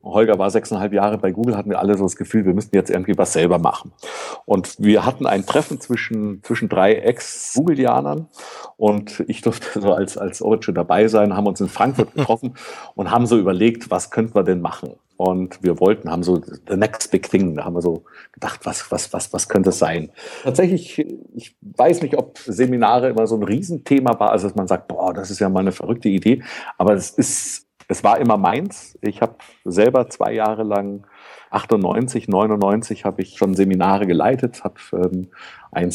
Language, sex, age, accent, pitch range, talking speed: German, male, 50-69, German, 95-115 Hz, 195 wpm